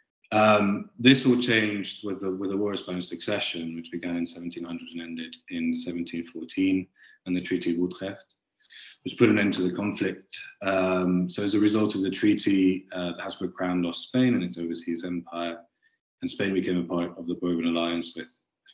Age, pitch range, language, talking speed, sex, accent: 20-39, 85-95 Hz, English, 190 wpm, male, British